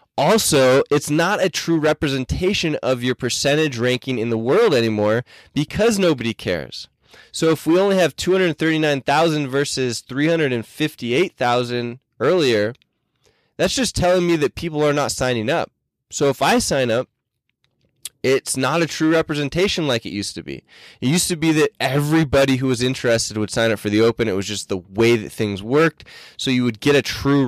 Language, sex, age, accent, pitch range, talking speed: English, male, 20-39, American, 115-150 Hz, 175 wpm